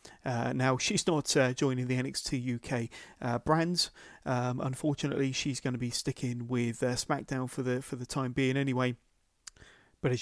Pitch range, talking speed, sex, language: 125-150 Hz, 175 wpm, male, English